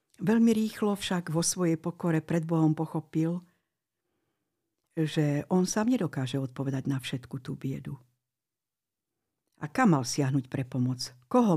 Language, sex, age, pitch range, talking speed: Slovak, female, 60-79, 140-185 Hz, 130 wpm